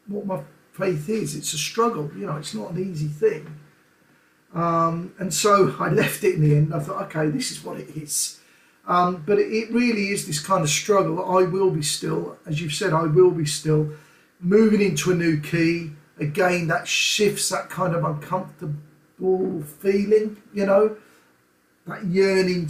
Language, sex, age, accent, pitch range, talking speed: English, male, 40-59, British, 150-190 Hz, 180 wpm